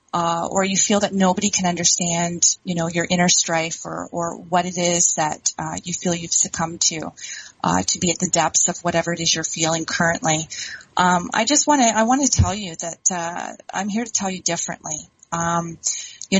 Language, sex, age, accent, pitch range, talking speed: English, female, 30-49, American, 165-195 Hz, 210 wpm